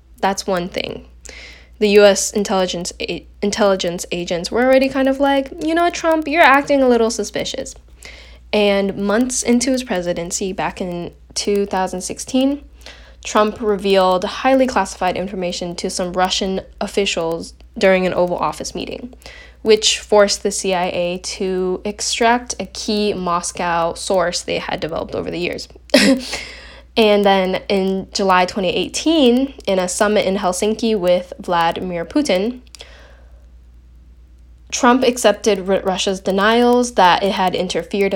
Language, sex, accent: English, female, American